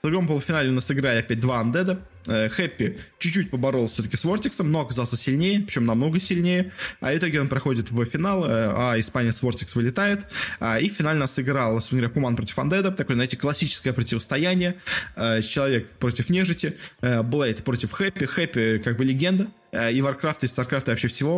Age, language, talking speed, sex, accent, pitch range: 20-39, Russian, 185 wpm, male, native, 120-160 Hz